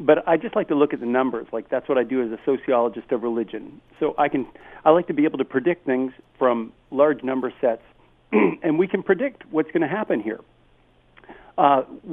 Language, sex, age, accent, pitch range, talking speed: English, male, 50-69, American, 135-210 Hz, 220 wpm